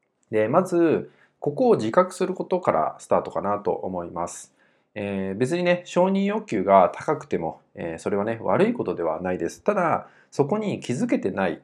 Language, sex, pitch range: Japanese, male, 105-165 Hz